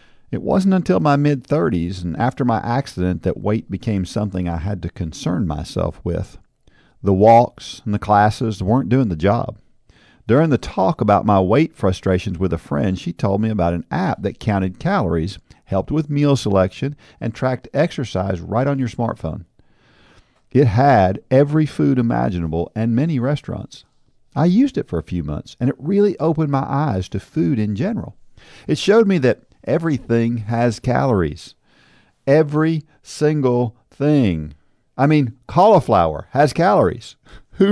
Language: English